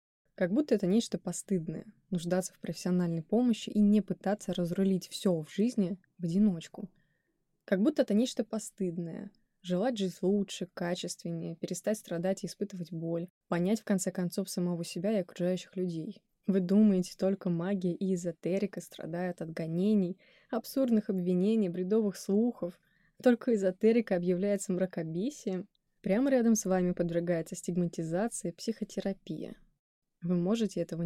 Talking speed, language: 135 wpm, Russian